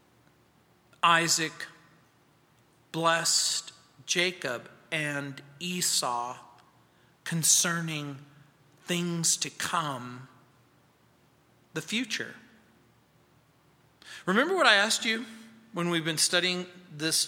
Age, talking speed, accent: 40-59, 75 wpm, American